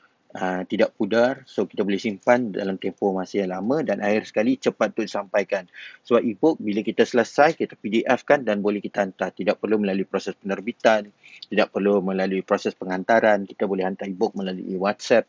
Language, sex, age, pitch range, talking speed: Malay, male, 30-49, 100-120 Hz, 180 wpm